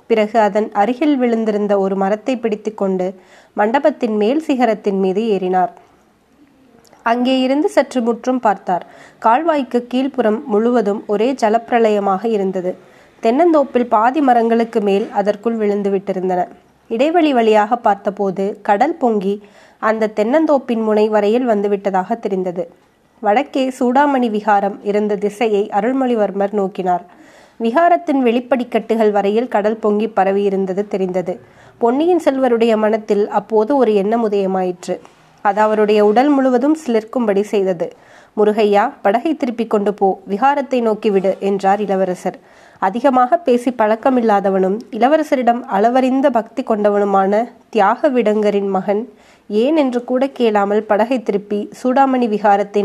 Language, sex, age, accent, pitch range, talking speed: Tamil, female, 20-39, native, 205-245 Hz, 105 wpm